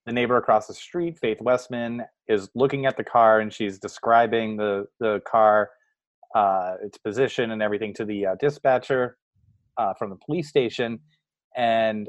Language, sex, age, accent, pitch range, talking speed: English, male, 30-49, American, 110-130 Hz, 165 wpm